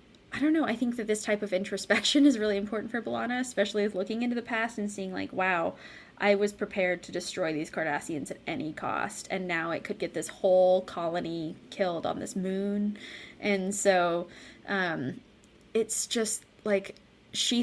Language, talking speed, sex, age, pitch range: English, 185 wpm, female, 20-39, 185-225 Hz